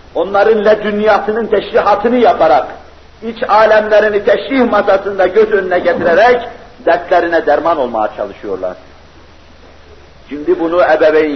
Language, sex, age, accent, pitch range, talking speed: Turkish, male, 50-69, native, 135-210 Hz, 95 wpm